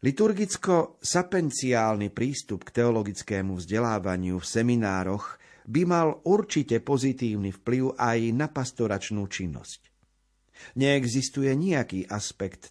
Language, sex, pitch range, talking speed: Slovak, male, 105-135 Hz, 90 wpm